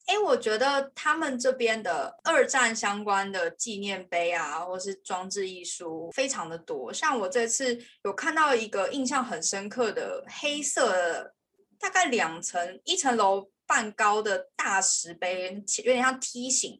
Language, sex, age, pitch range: Chinese, female, 20-39, 205-325 Hz